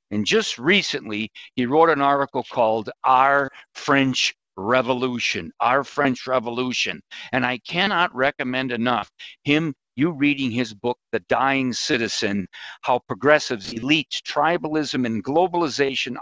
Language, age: English, 50-69